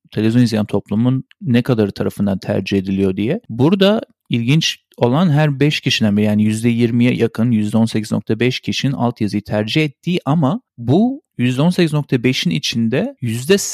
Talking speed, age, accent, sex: 120 wpm, 40-59, native, male